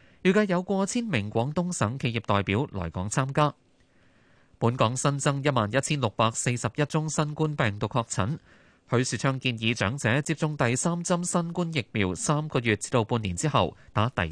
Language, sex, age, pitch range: Chinese, male, 20-39, 105-145 Hz